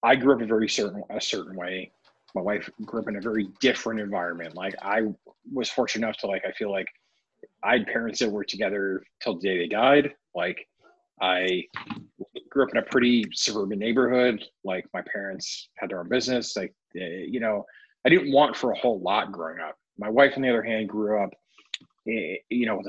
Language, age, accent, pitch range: English, 30-49, American, 95-125 Hz